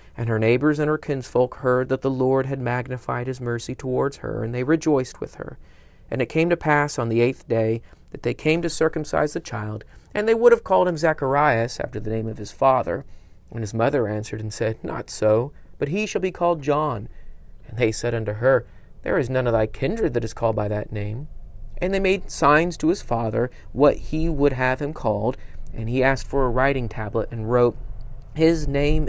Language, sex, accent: English, male, American